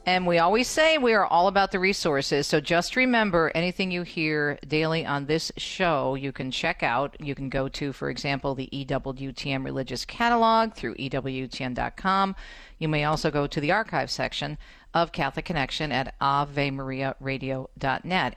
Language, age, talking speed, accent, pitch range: English, 50-69, 160 wpm, American, 140-180 Hz